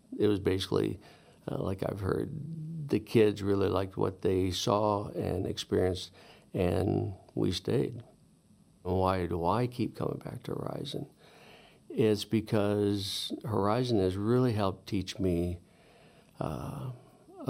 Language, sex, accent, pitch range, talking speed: English, male, American, 95-110 Hz, 125 wpm